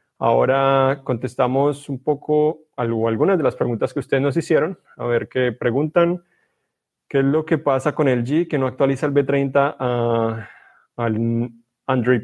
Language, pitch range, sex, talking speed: Spanish, 120-150 Hz, male, 150 wpm